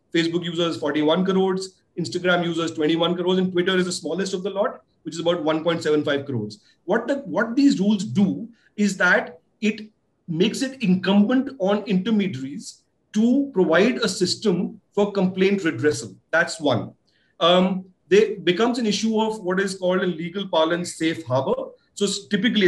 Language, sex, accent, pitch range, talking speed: English, male, Indian, 170-220 Hz, 155 wpm